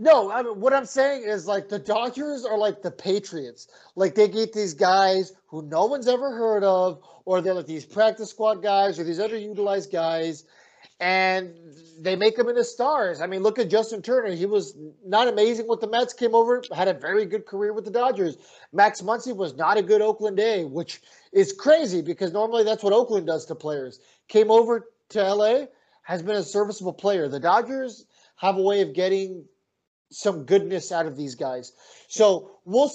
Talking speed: 195 wpm